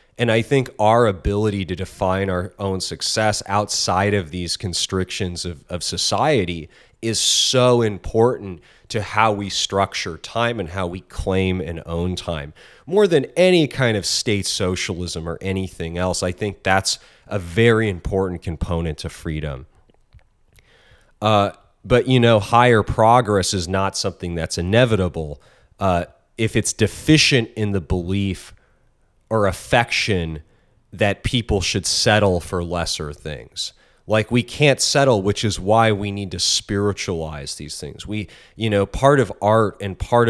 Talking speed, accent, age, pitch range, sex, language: 145 wpm, American, 30-49, 90-115 Hz, male, English